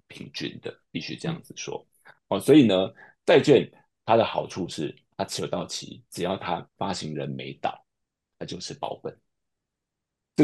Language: Chinese